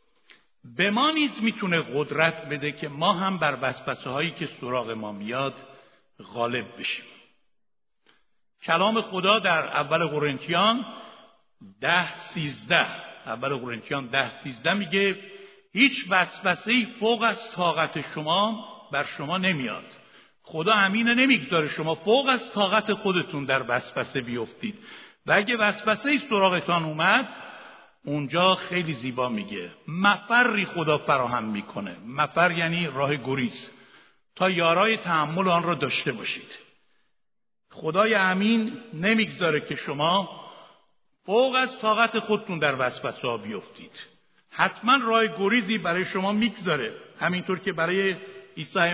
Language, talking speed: Persian, 120 wpm